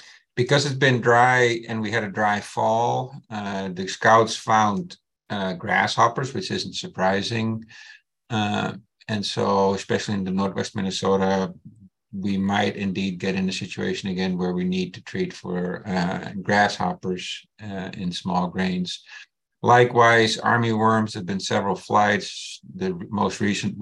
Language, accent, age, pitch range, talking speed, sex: English, American, 50-69, 95-115 Hz, 140 wpm, male